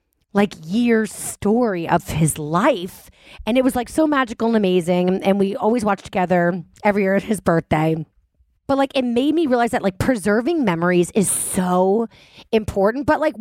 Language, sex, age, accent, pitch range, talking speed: English, female, 30-49, American, 190-265 Hz, 175 wpm